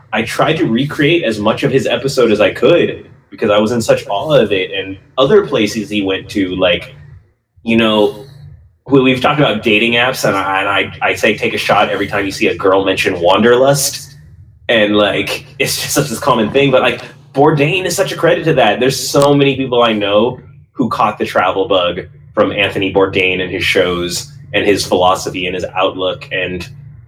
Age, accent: 20-39, American